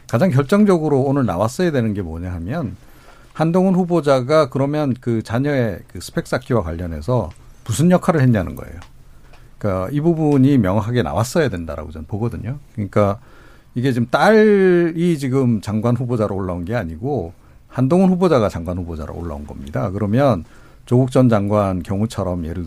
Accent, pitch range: native, 90-130 Hz